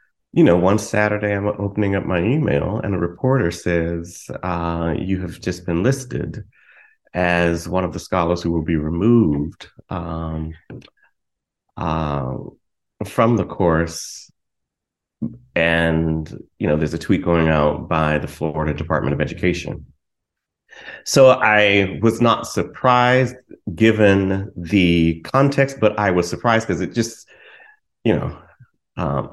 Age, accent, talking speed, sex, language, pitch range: 30-49, American, 135 wpm, male, English, 85-125 Hz